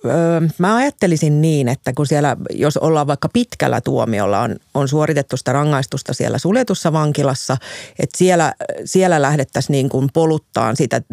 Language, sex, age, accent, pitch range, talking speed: Finnish, female, 40-59, native, 135-165 Hz, 145 wpm